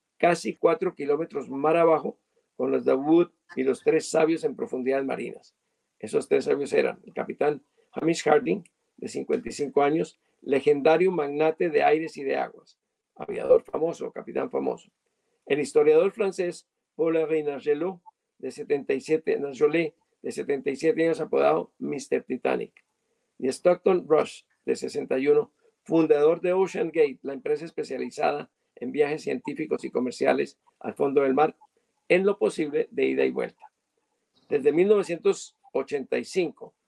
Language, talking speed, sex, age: Spanish, 130 wpm, male, 50-69